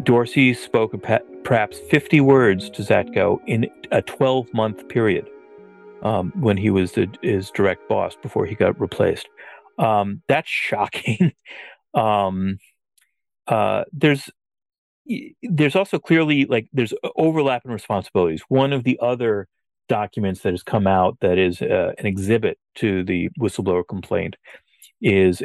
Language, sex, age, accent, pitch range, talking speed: English, male, 40-59, American, 95-130 Hz, 130 wpm